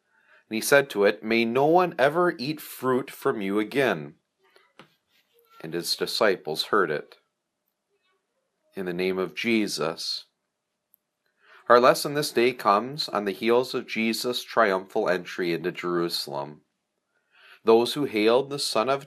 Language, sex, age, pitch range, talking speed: English, male, 40-59, 100-140 Hz, 140 wpm